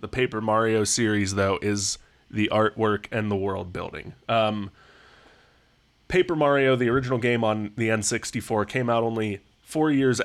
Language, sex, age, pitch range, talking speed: English, male, 20-39, 105-130 Hz, 150 wpm